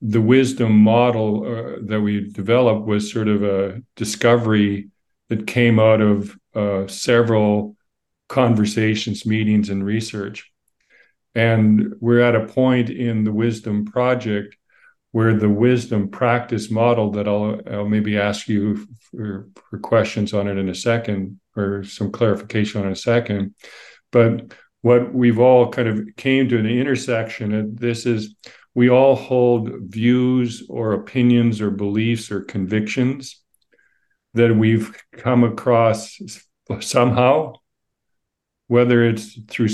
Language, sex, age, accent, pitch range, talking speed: English, male, 50-69, American, 105-120 Hz, 135 wpm